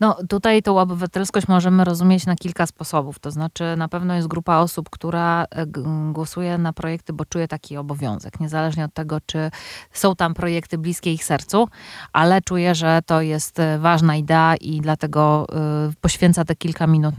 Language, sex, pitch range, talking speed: Polish, female, 155-180 Hz, 170 wpm